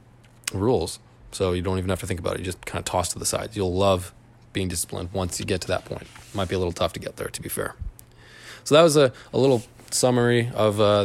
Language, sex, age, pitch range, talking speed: English, male, 20-39, 100-120 Hz, 265 wpm